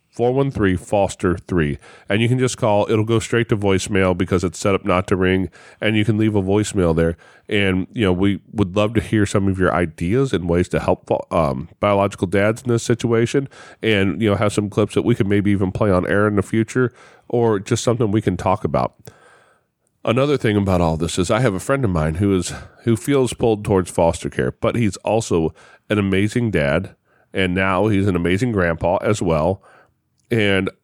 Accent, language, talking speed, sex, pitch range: American, English, 215 wpm, male, 90-115 Hz